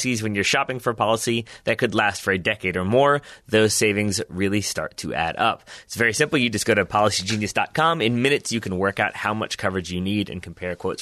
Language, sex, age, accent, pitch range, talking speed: English, male, 20-39, American, 105-135 Hz, 235 wpm